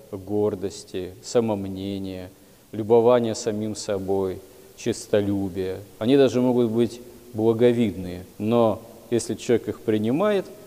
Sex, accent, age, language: male, native, 40-59, Russian